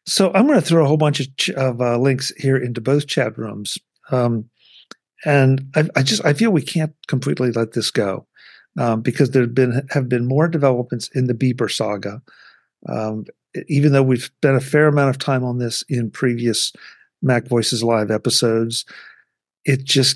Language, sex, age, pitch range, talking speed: English, male, 50-69, 120-145 Hz, 190 wpm